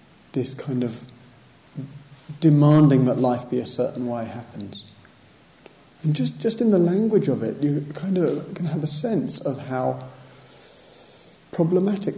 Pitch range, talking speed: 120-150 Hz, 145 wpm